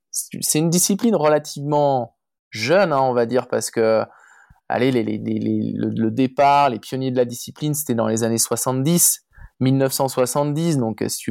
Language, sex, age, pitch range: French, male, 20-39, 115-150 Hz